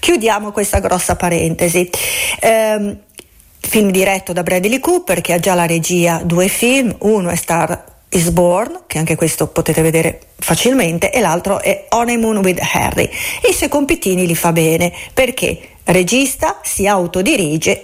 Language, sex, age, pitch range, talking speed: Italian, female, 40-59, 180-240 Hz, 150 wpm